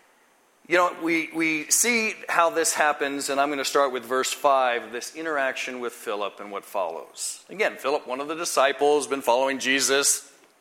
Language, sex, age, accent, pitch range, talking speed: English, male, 50-69, American, 135-190 Hz, 185 wpm